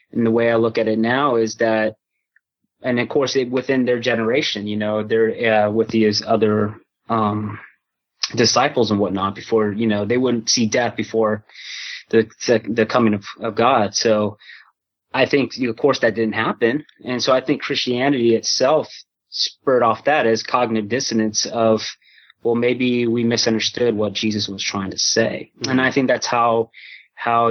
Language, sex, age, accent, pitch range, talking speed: English, male, 20-39, American, 110-120 Hz, 175 wpm